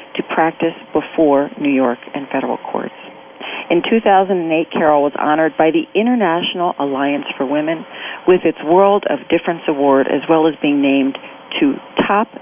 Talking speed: 155 wpm